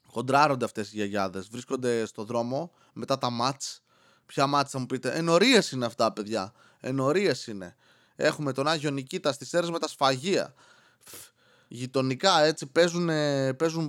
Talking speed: 145 wpm